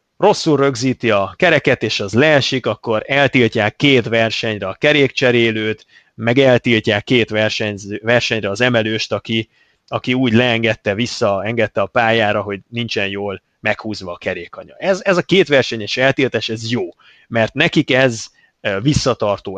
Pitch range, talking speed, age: 110-130 Hz, 145 wpm, 30-49